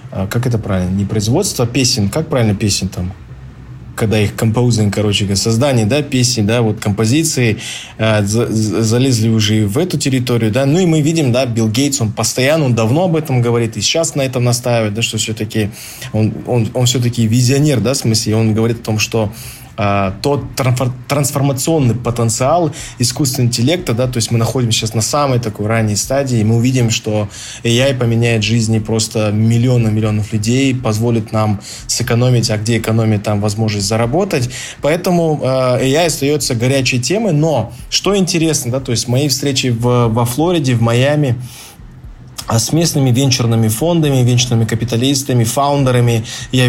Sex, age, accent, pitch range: male, 20-39, native, 110-135 Hz